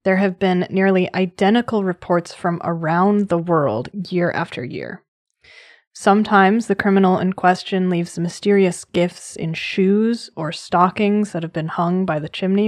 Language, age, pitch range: English, 20-39, 175-210 Hz